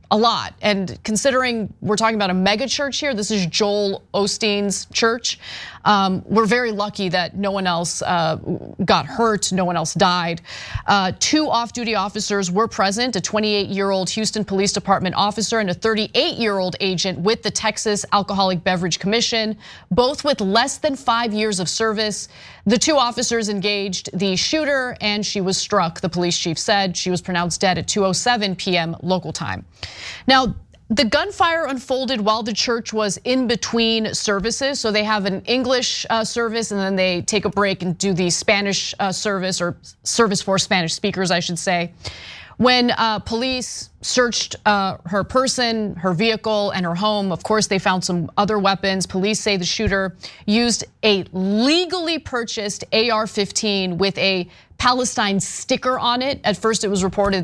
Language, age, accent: English, 30-49, American